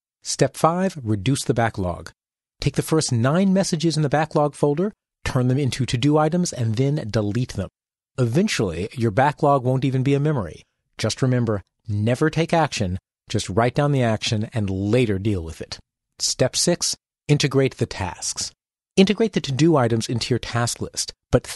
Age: 40-59